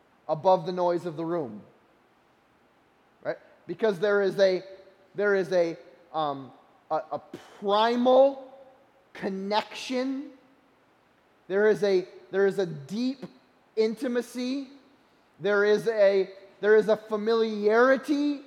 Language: English